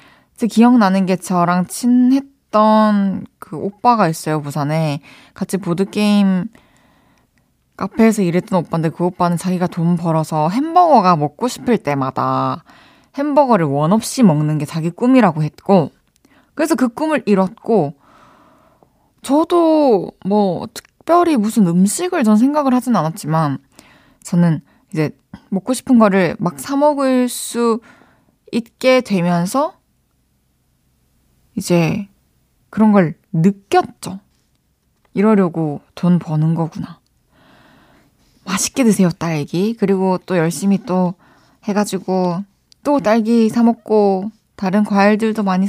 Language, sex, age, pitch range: Korean, female, 20-39, 175-235 Hz